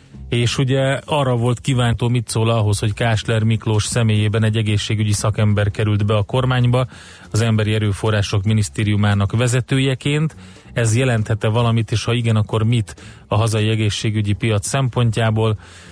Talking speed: 140 wpm